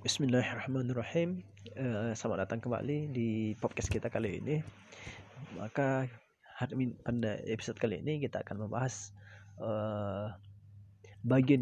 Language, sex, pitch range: Indonesian, male, 105-140 Hz